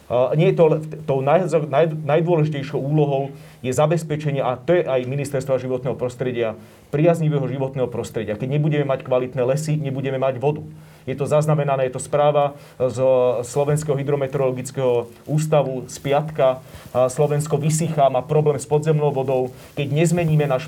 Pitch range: 130-155 Hz